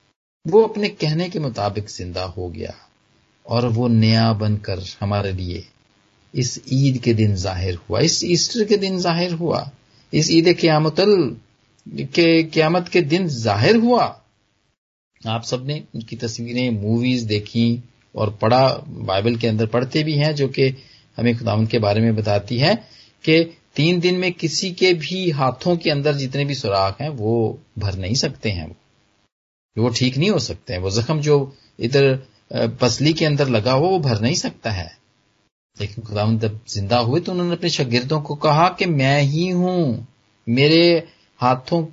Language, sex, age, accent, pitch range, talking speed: Hindi, male, 40-59, native, 115-170 Hz, 165 wpm